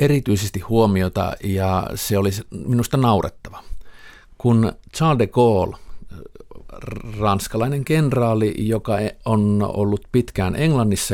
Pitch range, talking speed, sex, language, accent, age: 90-110 Hz, 95 wpm, male, Finnish, native, 50-69